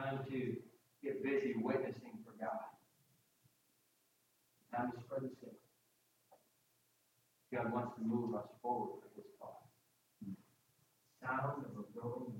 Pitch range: 115-130 Hz